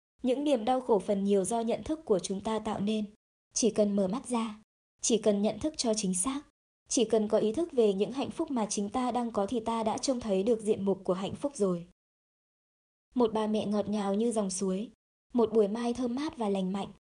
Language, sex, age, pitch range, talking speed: Vietnamese, male, 20-39, 200-245 Hz, 240 wpm